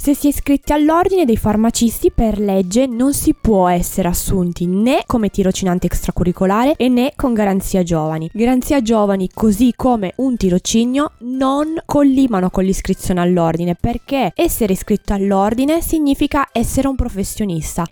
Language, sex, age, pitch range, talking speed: Italian, female, 20-39, 195-270 Hz, 140 wpm